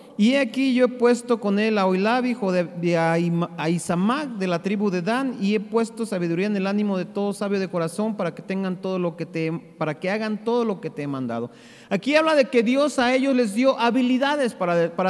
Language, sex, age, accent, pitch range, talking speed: Spanish, male, 40-59, Mexican, 195-260 Hz, 230 wpm